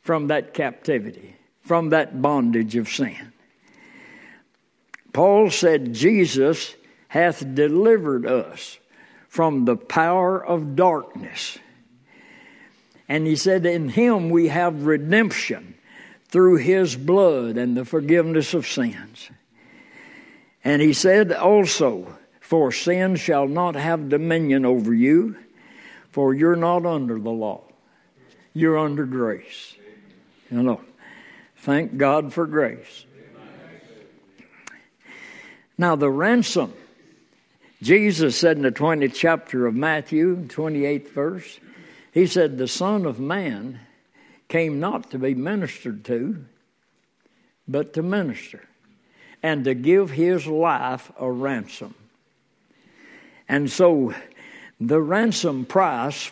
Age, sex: 60-79, male